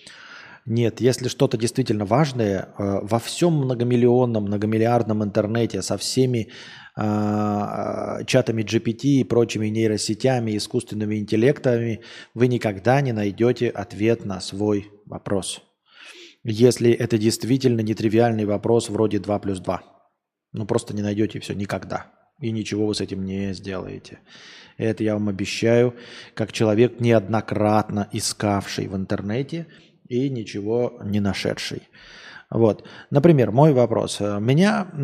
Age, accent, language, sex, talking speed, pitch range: 20-39, native, Russian, male, 120 wpm, 105-130 Hz